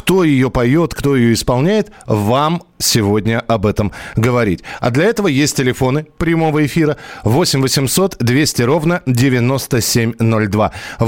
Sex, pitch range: male, 115-165 Hz